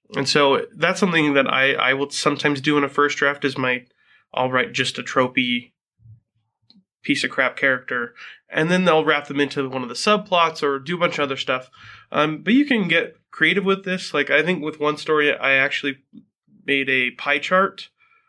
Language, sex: English, male